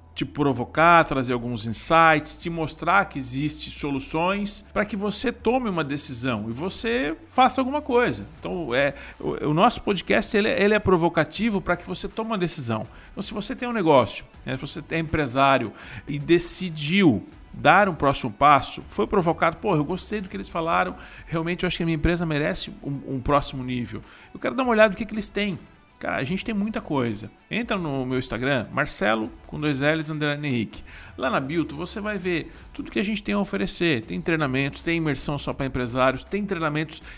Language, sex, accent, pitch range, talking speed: Portuguese, male, Brazilian, 130-190 Hz, 195 wpm